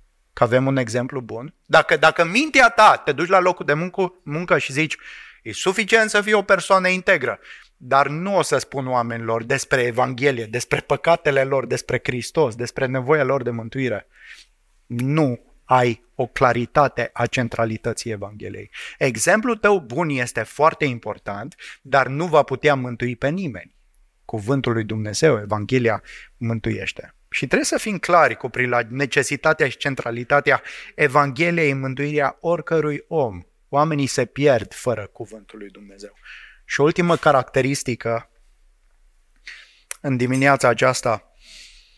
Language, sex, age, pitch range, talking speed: English, male, 30-49, 115-150 Hz, 135 wpm